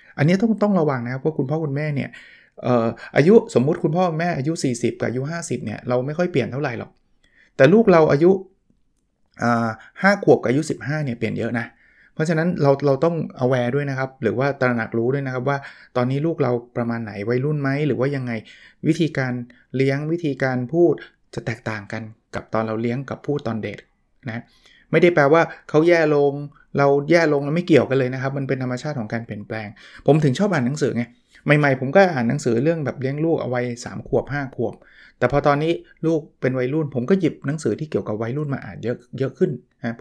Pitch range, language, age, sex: 120-150 Hz, Thai, 20-39, male